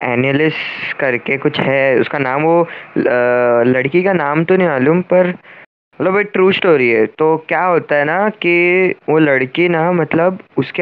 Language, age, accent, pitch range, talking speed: Hindi, 20-39, native, 130-175 Hz, 165 wpm